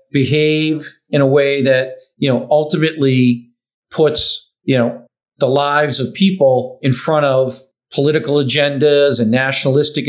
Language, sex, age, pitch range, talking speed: Bulgarian, male, 50-69, 130-145 Hz, 130 wpm